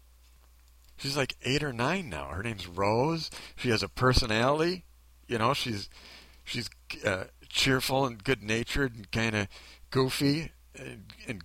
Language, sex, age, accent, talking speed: English, male, 50-69, American, 140 wpm